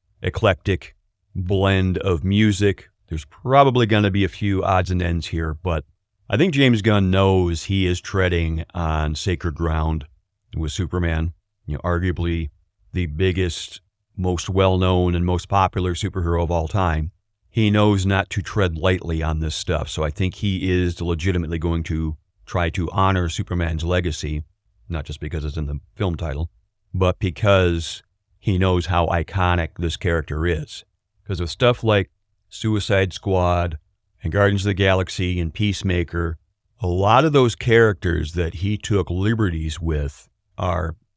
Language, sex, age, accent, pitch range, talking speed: English, male, 40-59, American, 85-100 Hz, 155 wpm